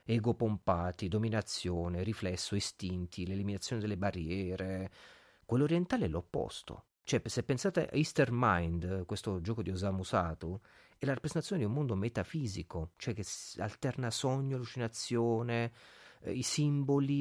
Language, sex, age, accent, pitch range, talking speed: Italian, male, 40-59, native, 105-135 Hz, 135 wpm